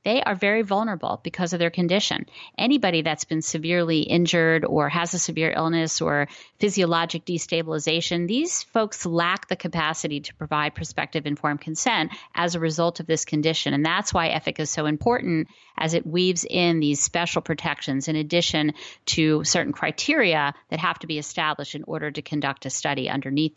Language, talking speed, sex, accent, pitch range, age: English, 175 wpm, female, American, 155-185 Hz, 40-59